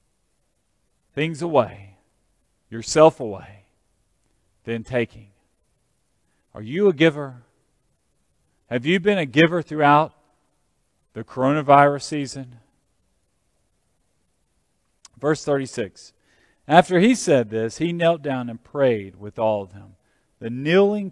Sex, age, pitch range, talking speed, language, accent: male, 40-59, 120-185 Hz, 100 wpm, English, American